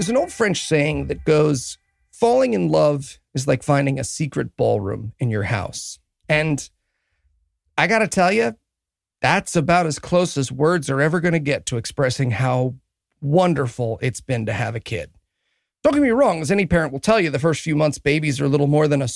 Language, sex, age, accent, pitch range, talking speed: English, male, 40-59, American, 135-210 Hz, 210 wpm